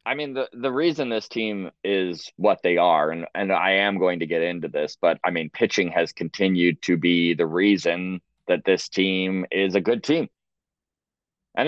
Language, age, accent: English, 20-39, American